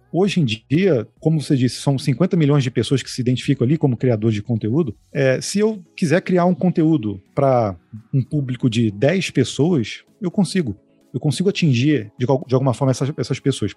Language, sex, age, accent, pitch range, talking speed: Portuguese, male, 40-59, Brazilian, 125-160 Hz, 185 wpm